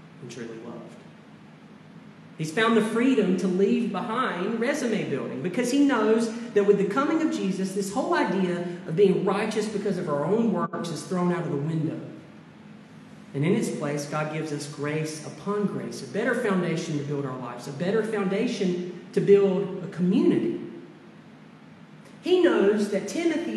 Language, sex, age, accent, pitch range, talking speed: English, male, 40-59, American, 180-240 Hz, 170 wpm